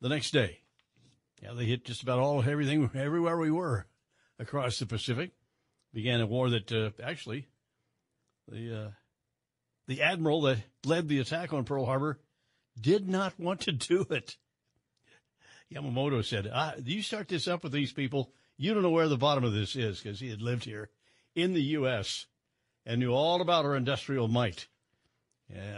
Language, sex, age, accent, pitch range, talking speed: English, male, 60-79, American, 115-165 Hz, 170 wpm